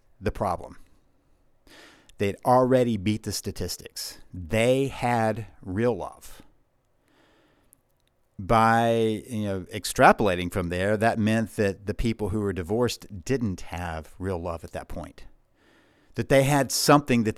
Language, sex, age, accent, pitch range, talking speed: English, male, 50-69, American, 105-130 Hz, 130 wpm